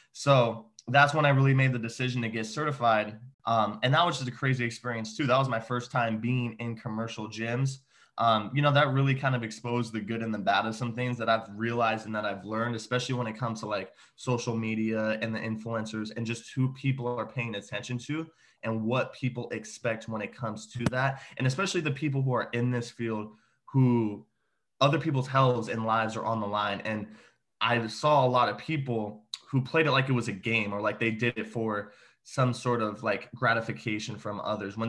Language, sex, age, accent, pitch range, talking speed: English, male, 20-39, American, 110-125 Hz, 220 wpm